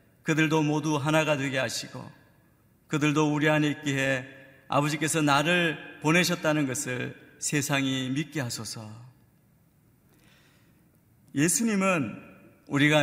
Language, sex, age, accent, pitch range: Korean, male, 50-69, native, 135-165 Hz